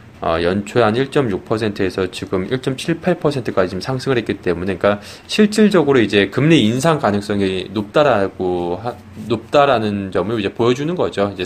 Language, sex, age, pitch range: Korean, male, 20-39, 100-135 Hz